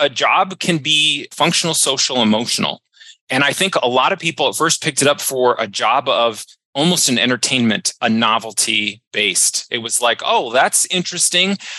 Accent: American